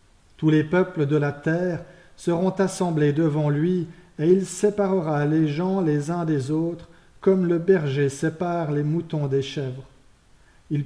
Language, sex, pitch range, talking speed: French, male, 140-175 Hz, 155 wpm